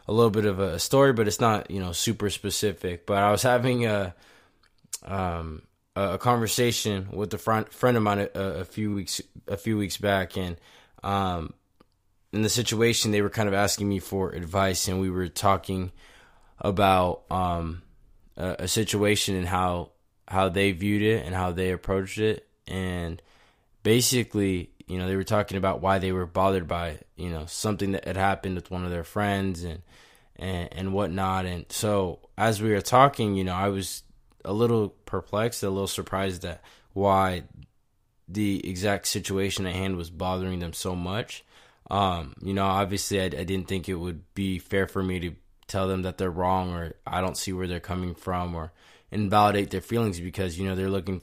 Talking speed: 185 wpm